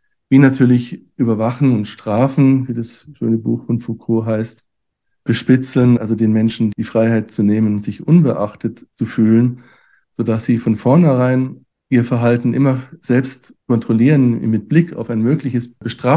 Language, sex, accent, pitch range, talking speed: German, male, German, 115-130 Hz, 140 wpm